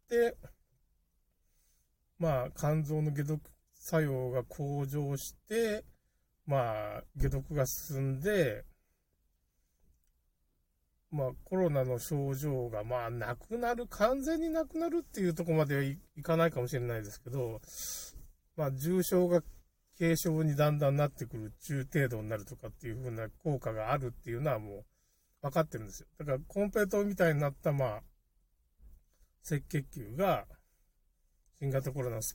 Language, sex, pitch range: Japanese, male, 110-160 Hz